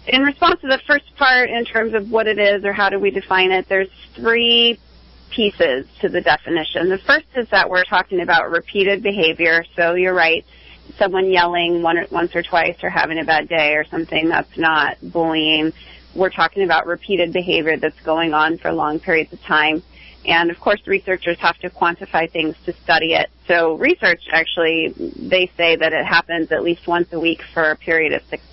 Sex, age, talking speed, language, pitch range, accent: female, 30-49, 195 wpm, English, 165-195 Hz, American